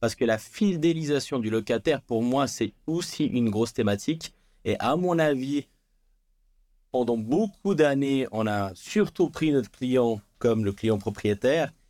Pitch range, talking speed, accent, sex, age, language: 110-145 Hz, 150 wpm, French, male, 30-49, French